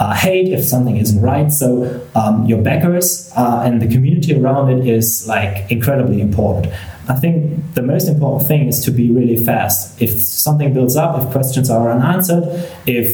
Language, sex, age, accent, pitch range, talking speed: English, male, 30-49, German, 115-150 Hz, 185 wpm